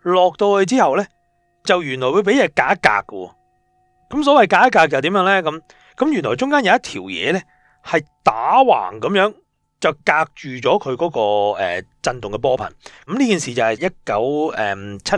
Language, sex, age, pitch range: Chinese, male, 30-49, 115-190 Hz